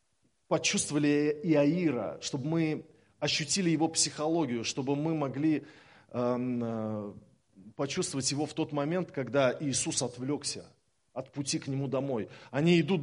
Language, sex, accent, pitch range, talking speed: Russian, male, native, 130-170 Hz, 115 wpm